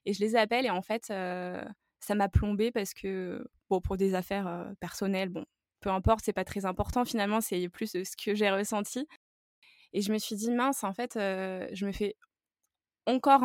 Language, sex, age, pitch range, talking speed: French, female, 20-39, 195-235 Hz, 205 wpm